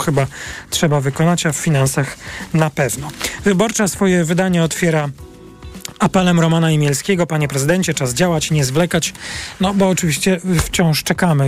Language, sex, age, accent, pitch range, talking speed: Polish, male, 40-59, native, 140-175 Hz, 135 wpm